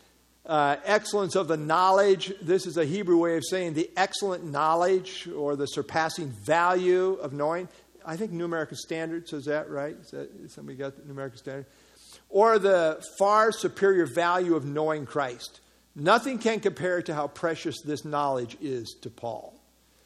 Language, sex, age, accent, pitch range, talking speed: English, male, 60-79, American, 145-205 Hz, 165 wpm